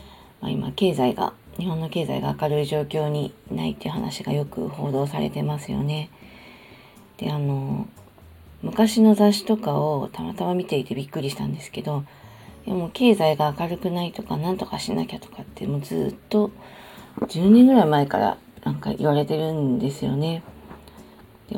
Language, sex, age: Japanese, female, 40-59